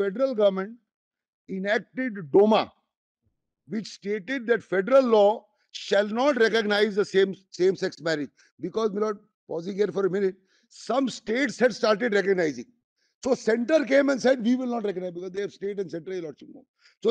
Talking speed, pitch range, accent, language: 170 wpm, 190-230 Hz, Indian, English